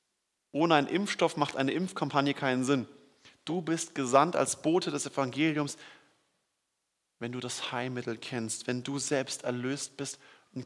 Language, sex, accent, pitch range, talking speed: German, male, German, 120-140 Hz, 145 wpm